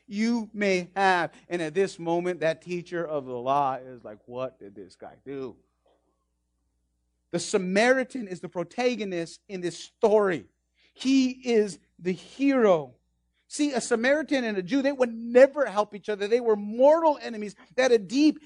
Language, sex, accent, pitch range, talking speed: English, male, American, 195-320 Hz, 165 wpm